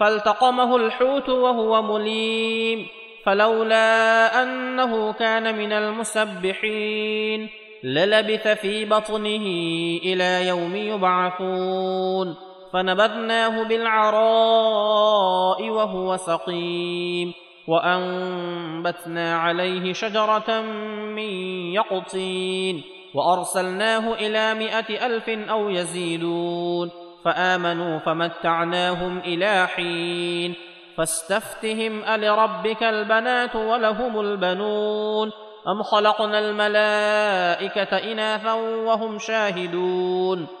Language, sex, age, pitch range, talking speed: Arabic, male, 30-49, 180-225 Hz, 65 wpm